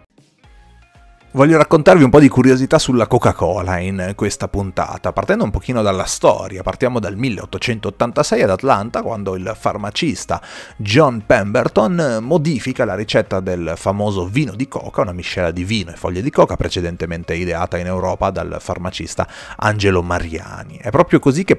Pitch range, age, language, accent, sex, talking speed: 90-120 Hz, 30-49, Italian, native, male, 155 wpm